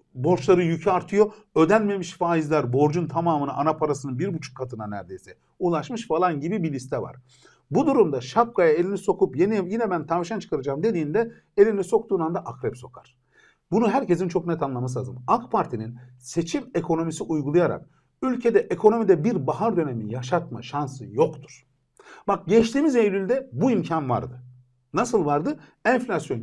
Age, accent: 50-69, native